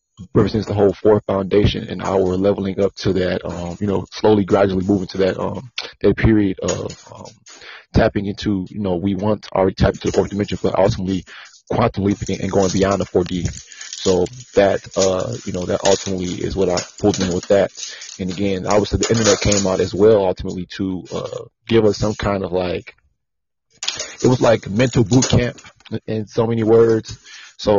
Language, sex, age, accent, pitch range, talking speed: English, male, 30-49, American, 95-105 Hz, 200 wpm